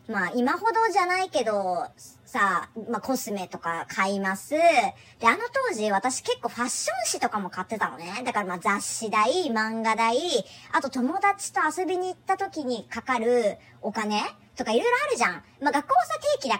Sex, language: male, Japanese